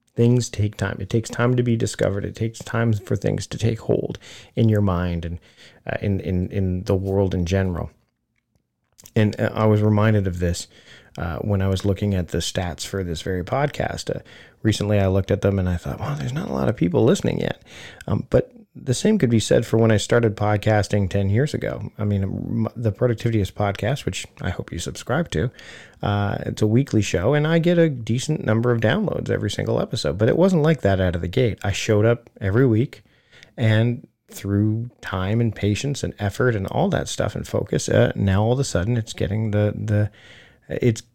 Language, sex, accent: English, male, American